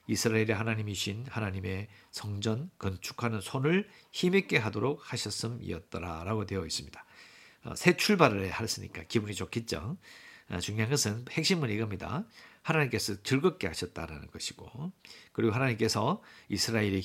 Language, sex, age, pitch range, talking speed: English, male, 50-69, 100-135 Hz, 95 wpm